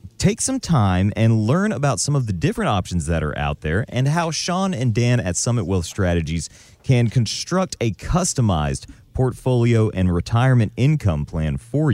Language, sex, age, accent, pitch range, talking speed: English, male, 40-59, American, 100-145 Hz, 170 wpm